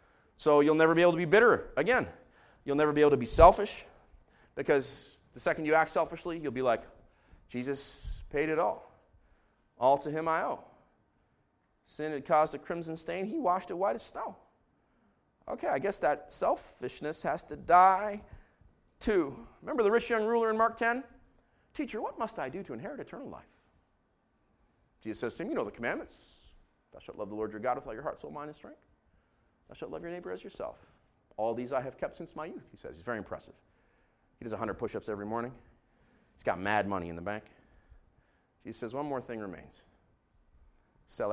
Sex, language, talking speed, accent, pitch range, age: male, English, 195 wpm, American, 100-165 Hz, 30-49